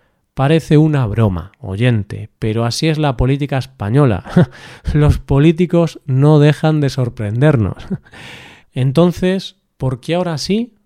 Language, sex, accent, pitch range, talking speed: Spanish, male, Spanish, 120-150 Hz, 115 wpm